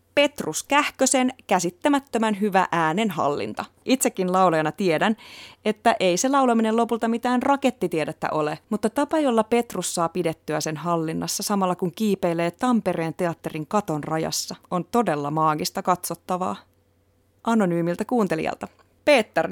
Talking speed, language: 120 wpm, Finnish